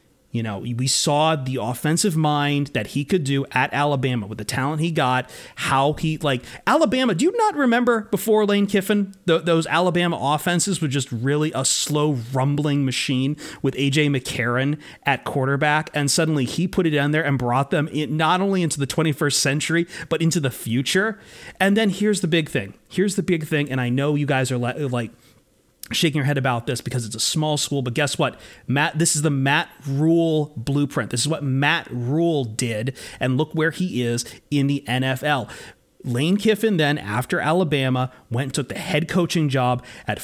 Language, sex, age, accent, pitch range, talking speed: English, male, 30-49, American, 130-170 Hz, 190 wpm